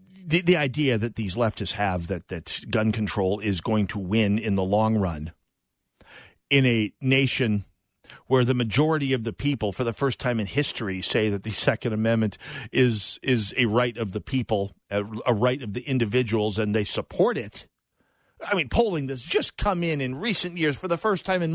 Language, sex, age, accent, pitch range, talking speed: English, male, 50-69, American, 110-170 Hz, 200 wpm